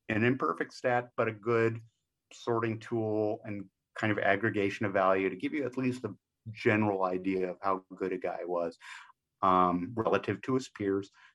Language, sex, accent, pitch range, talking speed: English, male, American, 100-125 Hz, 175 wpm